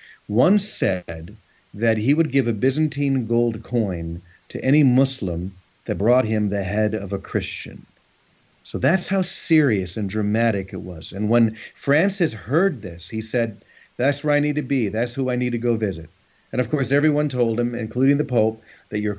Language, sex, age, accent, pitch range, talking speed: English, male, 40-59, American, 105-135 Hz, 190 wpm